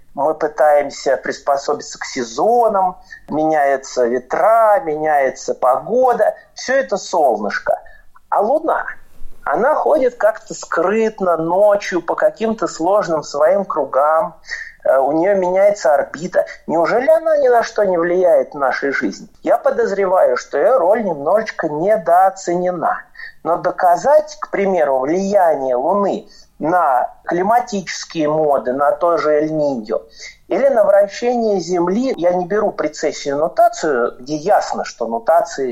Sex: male